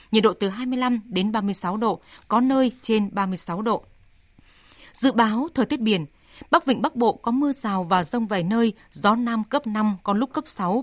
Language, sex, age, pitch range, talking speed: Vietnamese, female, 20-39, 195-240 Hz, 200 wpm